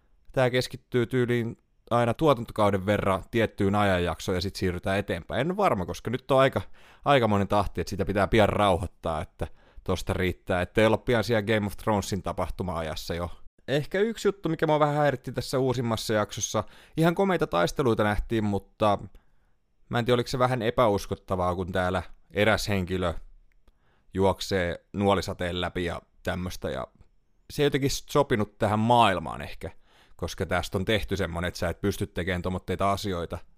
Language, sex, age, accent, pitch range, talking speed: Finnish, male, 30-49, native, 90-125 Hz, 160 wpm